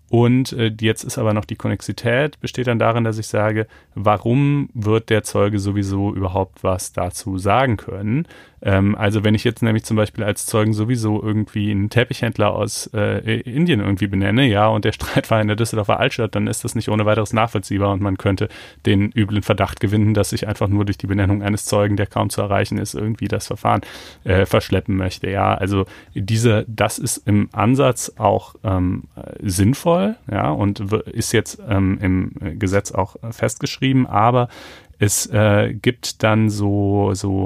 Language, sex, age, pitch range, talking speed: German, male, 30-49, 100-115 Hz, 175 wpm